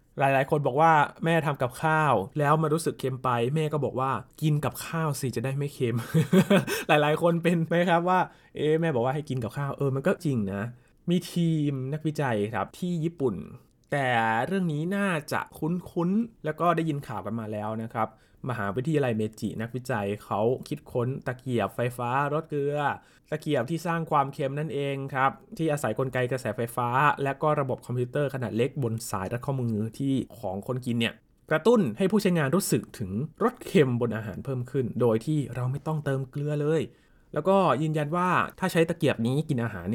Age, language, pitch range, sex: 20-39, Thai, 120-155 Hz, male